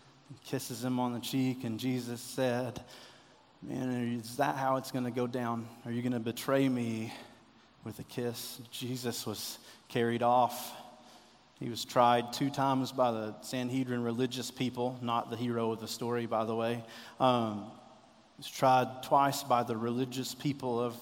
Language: English